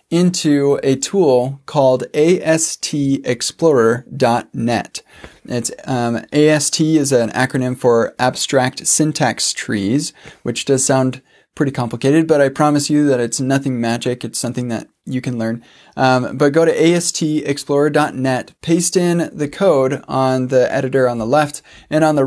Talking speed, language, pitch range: 145 wpm, English, 125-150 Hz